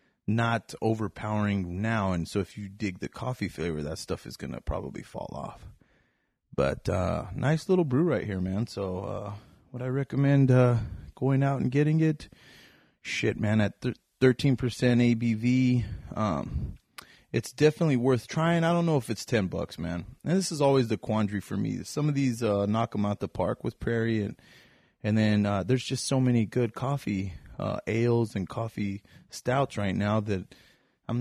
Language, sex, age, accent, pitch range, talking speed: English, male, 30-49, American, 100-120 Hz, 180 wpm